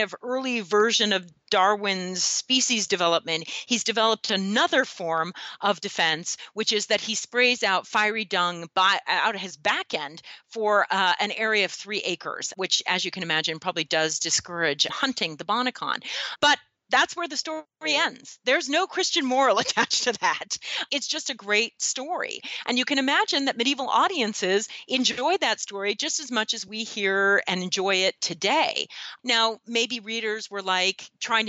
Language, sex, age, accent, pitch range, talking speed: English, female, 40-59, American, 185-245 Hz, 170 wpm